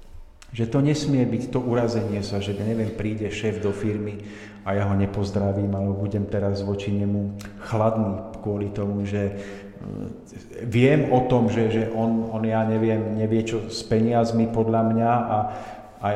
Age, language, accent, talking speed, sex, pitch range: 50-69, Czech, native, 165 wpm, male, 105-125 Hz